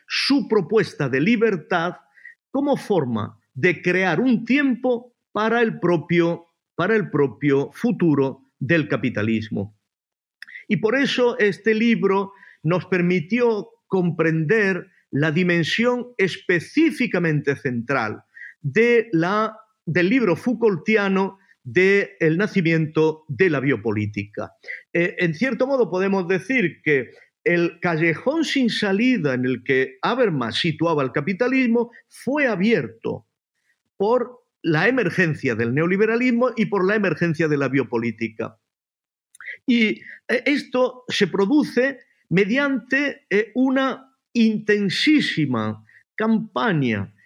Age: 50-69